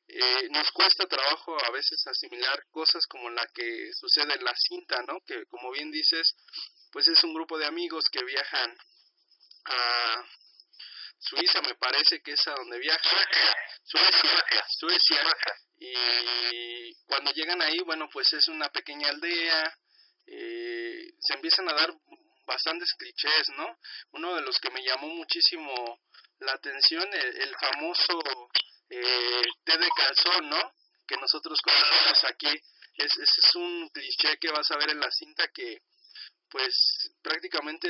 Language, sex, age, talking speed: Spanish, male, 30-49, 145 wpm